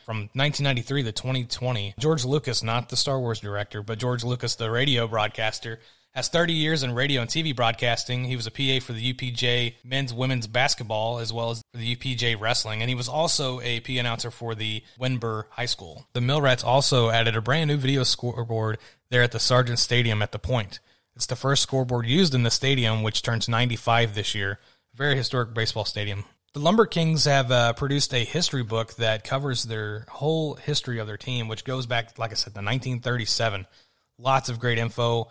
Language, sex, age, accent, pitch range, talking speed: English, male, 30-49, American, 115-130 Hz, 195 wpm